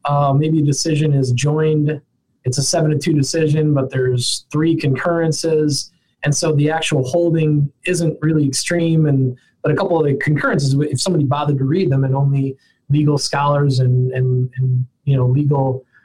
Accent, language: American, English